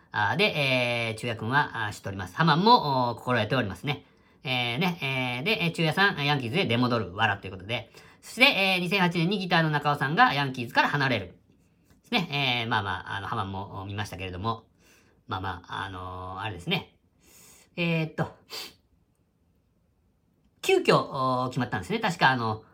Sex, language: female, Japanese